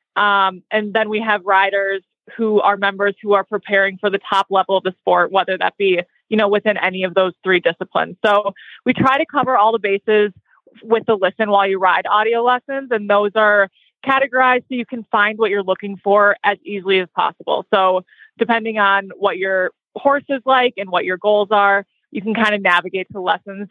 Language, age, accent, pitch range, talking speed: English, 20-39, American, 190-230 Hz, 205 wpm